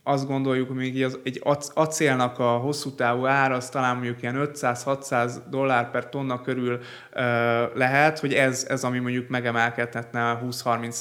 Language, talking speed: Hungarian, 145 wpm